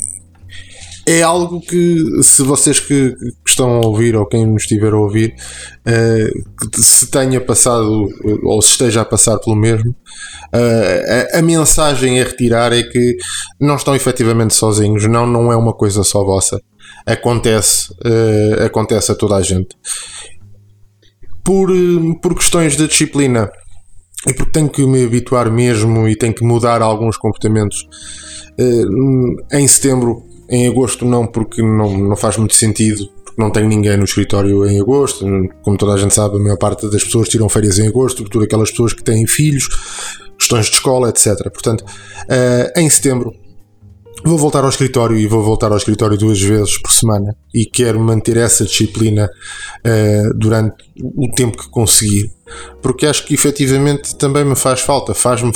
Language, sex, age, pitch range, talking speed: Portuguese, male, 20-39, 105-125 Hz, 165 wpm